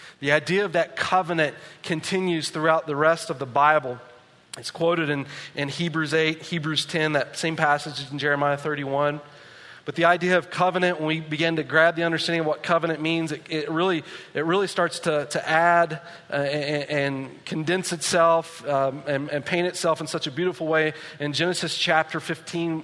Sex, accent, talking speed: male, American, 185 wpm